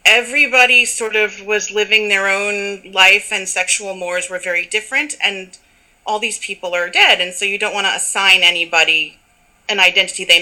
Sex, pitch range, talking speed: female, 175-220 Hz, 180 wpm